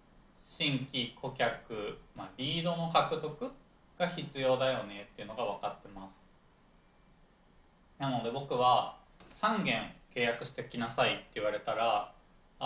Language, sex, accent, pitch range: Japanese, male, native, 115-170 Hz